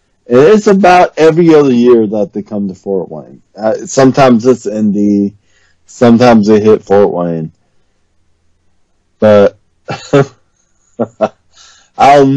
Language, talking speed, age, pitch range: English, 110 wpm, 40-59, 95-120 Hz